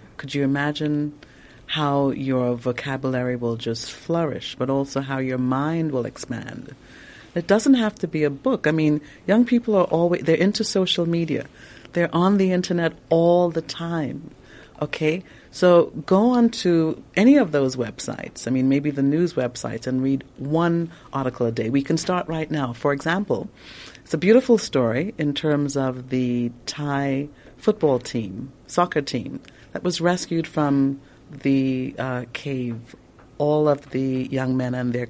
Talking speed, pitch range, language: 160 wpm, 130-165 Hz, English